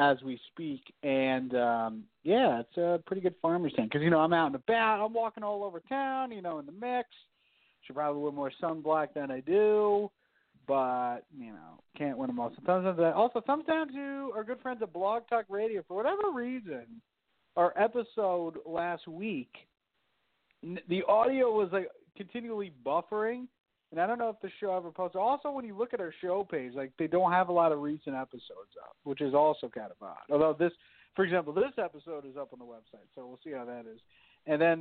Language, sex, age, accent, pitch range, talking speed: English, male, 40-59, American, 145-220 Hz, 205 wpm